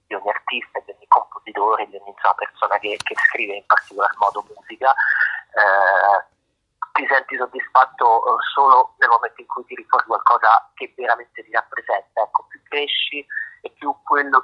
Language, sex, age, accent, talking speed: Italian, male, 30-49, native, 160 wpm